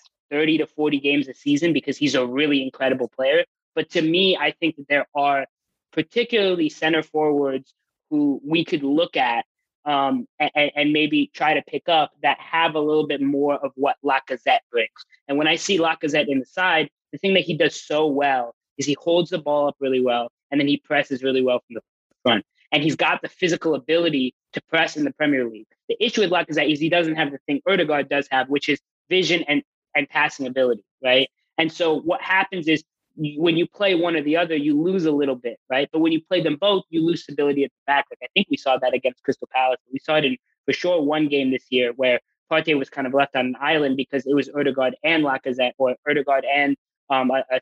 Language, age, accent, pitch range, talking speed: English, 20-39, American, 135-165 Hz, 230 wpm